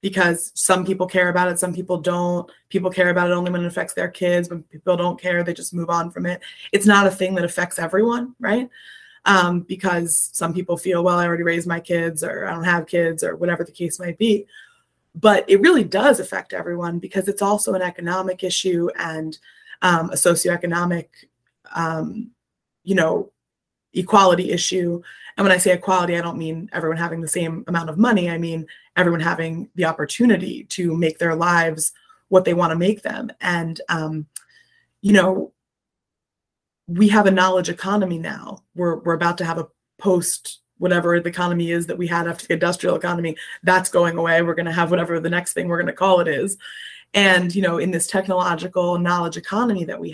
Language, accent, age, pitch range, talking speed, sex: English, American, 20-39, 170-190 Hz, 195 wpm, female